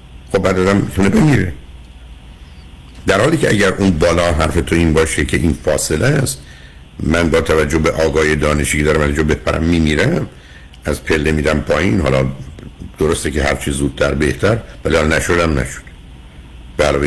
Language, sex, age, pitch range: Persian, male, 60-79, 65-100 Hz